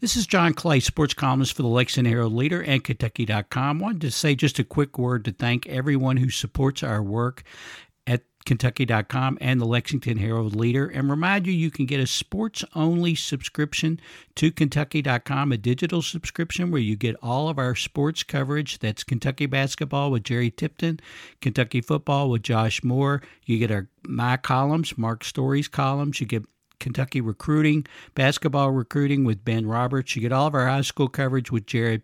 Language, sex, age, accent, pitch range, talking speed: English, male, 60-79, American, 115-145 Hz, 180 wpm